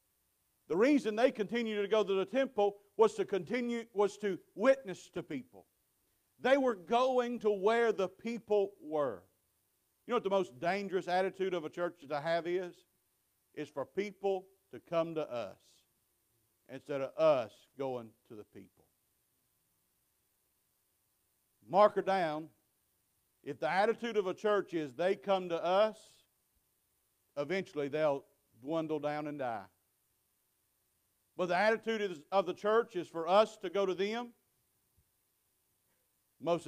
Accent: American